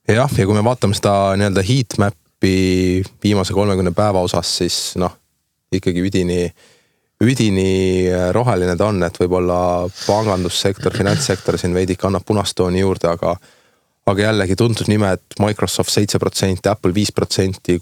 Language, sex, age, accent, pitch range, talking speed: English, male, 20-39, Finnish, 90-105 Hz, 120 wpm